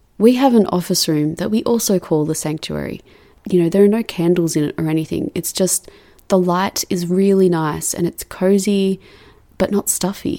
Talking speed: 195 wpm